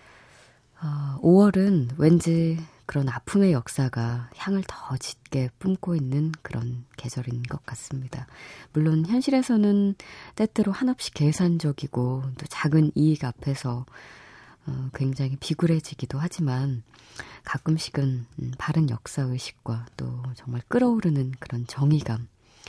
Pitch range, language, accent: 125-160 Hz, Korean, native